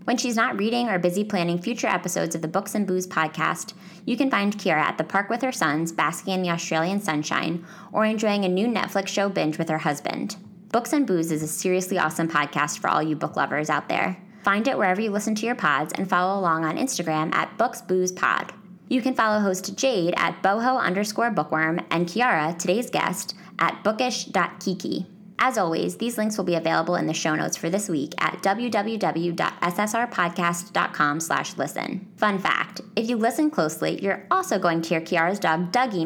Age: 20-39